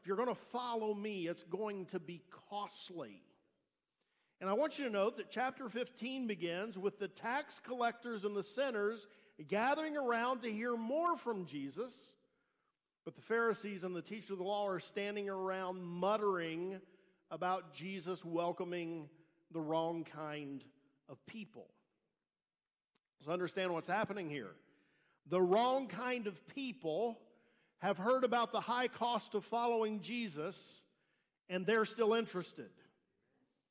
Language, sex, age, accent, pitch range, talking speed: English, male, 50-69, American, 165-215 Hz, 140 wpm